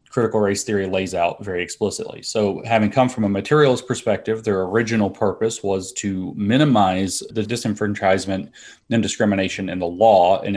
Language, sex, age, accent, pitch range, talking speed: English, male, 30-49, American, 95-110 Hz, 160 wpm